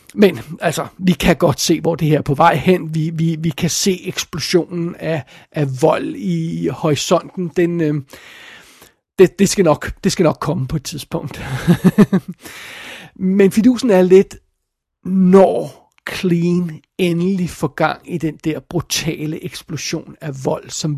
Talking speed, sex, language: 155 wpm, male, Danish